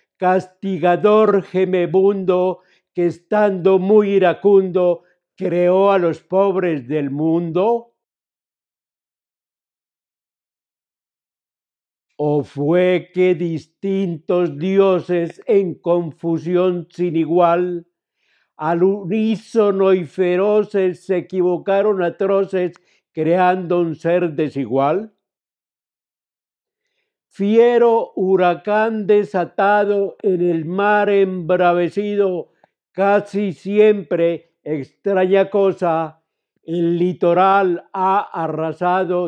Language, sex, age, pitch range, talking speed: Spanish, male, 60-79, 170-200 Hz, 70 wpm